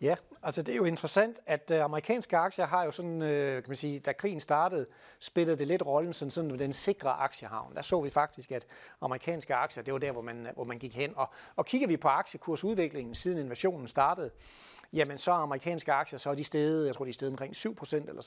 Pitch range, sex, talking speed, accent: 140-185 Hz, male, 225 wpm, native